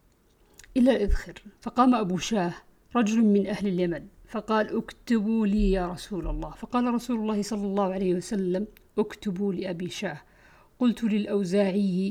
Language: Arabic